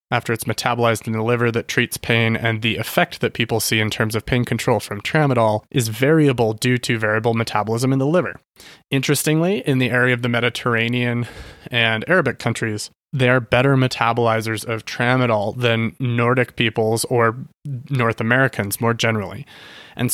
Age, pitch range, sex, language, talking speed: 20-39, 110-125 Hz, male, English, 165 wpm